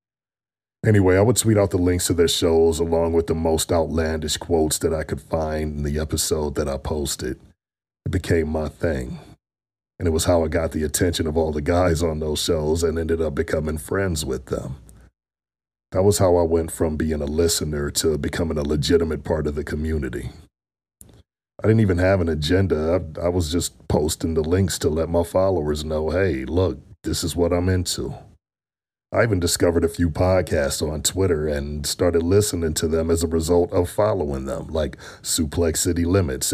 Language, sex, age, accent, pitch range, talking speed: English, male, 40-59, American, 80-95 Hz, 190 wpm